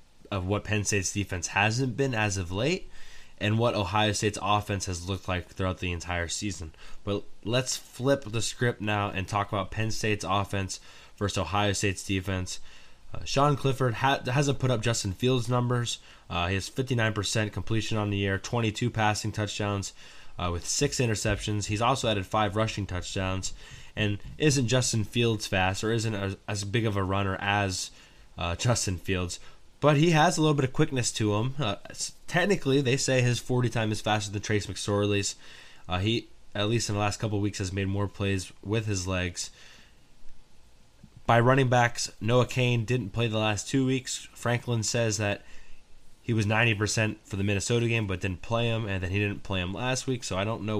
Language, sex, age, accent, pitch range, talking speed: English, male, 10-29, American, 100-120 Hz, 190 wpm